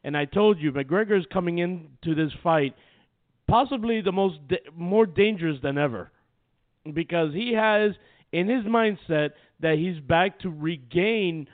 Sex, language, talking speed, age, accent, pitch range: male, English, 145 wpm, 50-69, American, 150-205 Hz